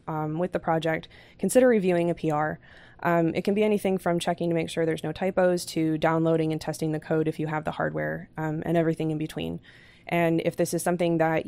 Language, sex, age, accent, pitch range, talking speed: English, female, 20-39, American, 155-190 Hz, 225 wpm